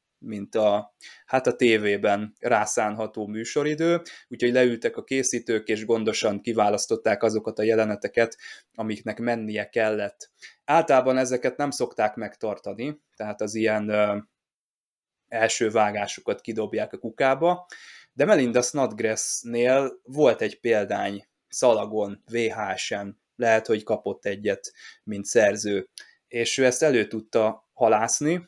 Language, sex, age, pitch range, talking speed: Hungarian, male, 20-39, 110-130 Hz, 115 wpm